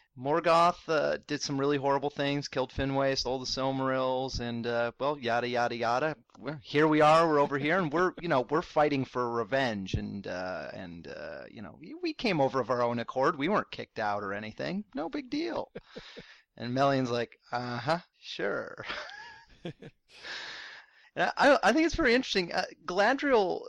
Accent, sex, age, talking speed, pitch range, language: American, male, 30-49, 170 wpm, 125-200 Hz, English